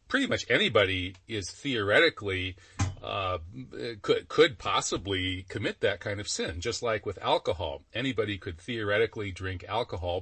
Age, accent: 40-59, American